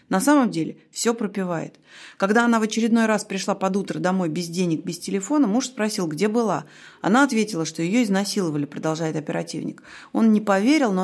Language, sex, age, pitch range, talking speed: Russian, female, 30-49, 185-230 Hz, 180 wpm